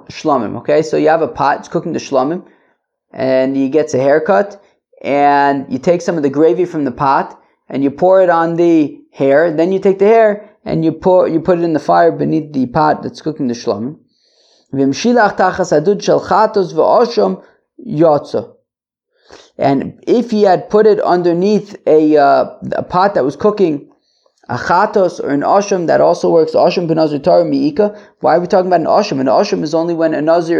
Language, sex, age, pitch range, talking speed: English, male, 20-39, 150-200 Hz, 180 wpm